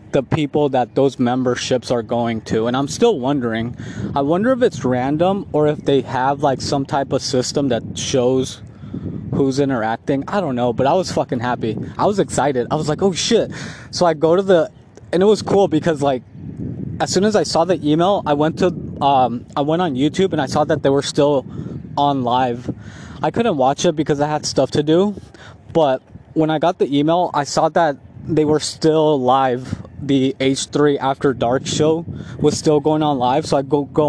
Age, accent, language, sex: 20-39, American, English, male